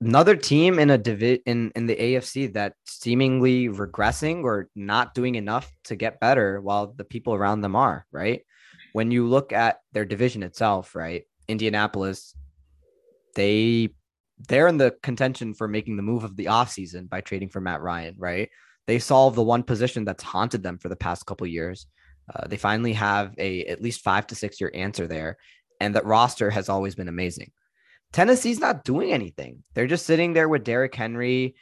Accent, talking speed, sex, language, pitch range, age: American, 185 wpm, male, English, 95-125 Hz, 20-39